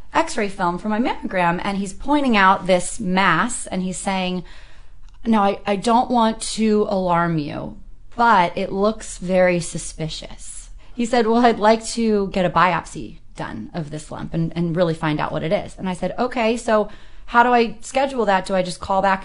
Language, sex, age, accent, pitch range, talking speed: English, female, 30-49, American, 180-235 Hz, 195 wpm